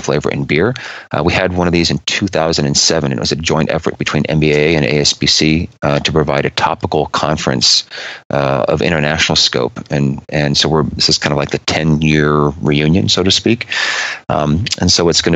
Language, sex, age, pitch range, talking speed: English, male, 30-49, 75-85 Hz, 195 wpm